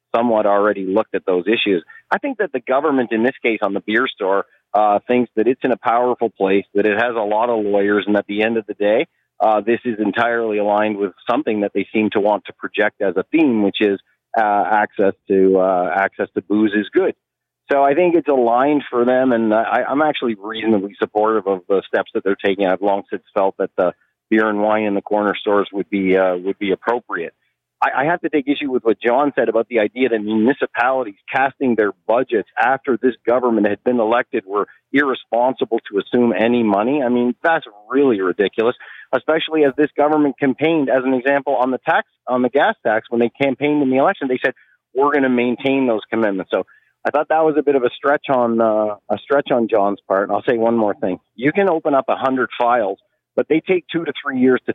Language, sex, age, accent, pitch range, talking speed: English, male, 40-59, American, 105-135 Hz, 230 wpm